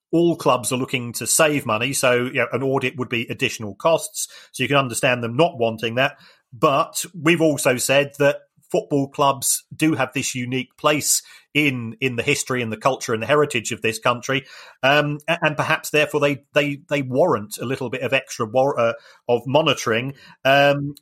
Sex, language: male, English